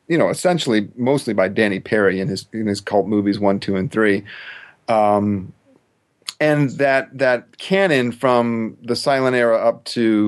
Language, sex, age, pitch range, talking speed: English, male, 40-59, 100-120 Hz, 165 wpm